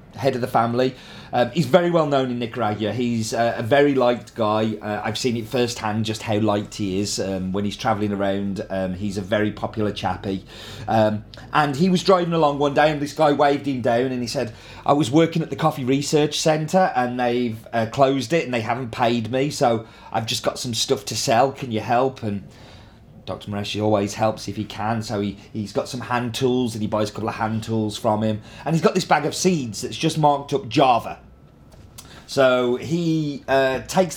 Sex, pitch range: male, 110-150 Hz